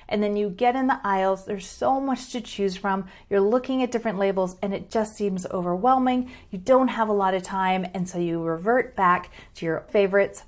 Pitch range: 195-250 Hz